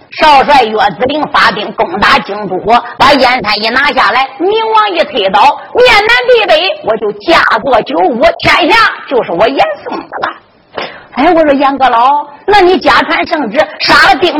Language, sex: Chinese, female